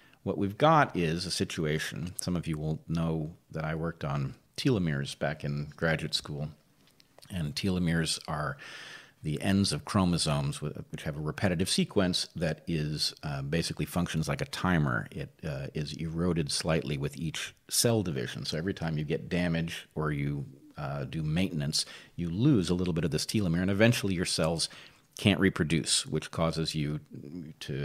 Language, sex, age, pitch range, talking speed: English, male, 40-59, 75-100 Hz, 170 wpm